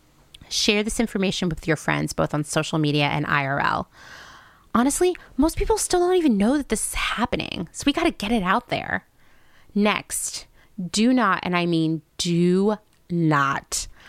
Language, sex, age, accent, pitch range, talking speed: English, female, 30-49, American, 160-225 Hz, 165 wpm